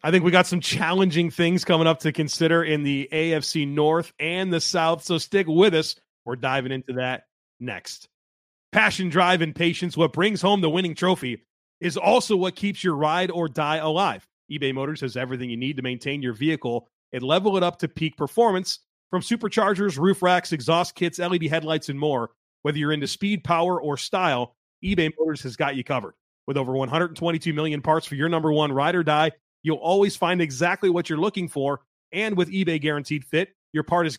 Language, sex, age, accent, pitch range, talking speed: English, male, 30-49, American, 145-180 Hz, 200 wpm